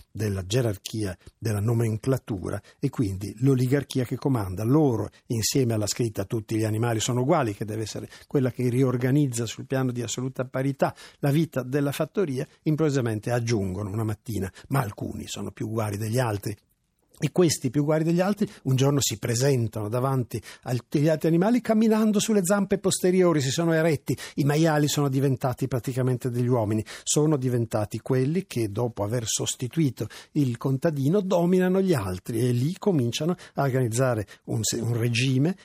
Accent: native